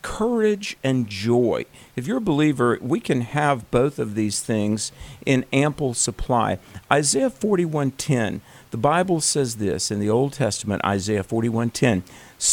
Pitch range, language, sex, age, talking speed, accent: 110-140 Hz, English, male, 50-69, 140 wpm, American